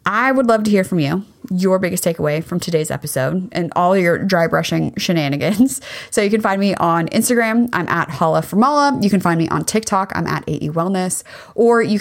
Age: 20-39